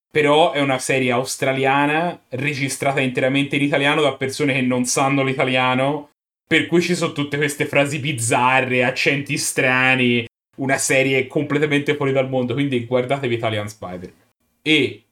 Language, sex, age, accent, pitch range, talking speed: Italian, male, 30-49, native, 120-150 Hz, 145 wpm